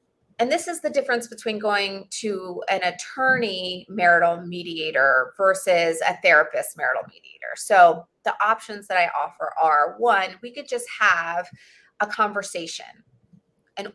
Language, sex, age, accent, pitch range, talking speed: English, female, 30-49, American, 180-240 Hz, 140 wpm